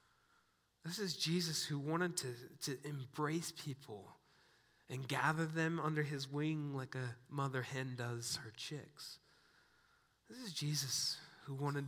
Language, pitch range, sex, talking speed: English, 115-140 Hz, male, 135 wpm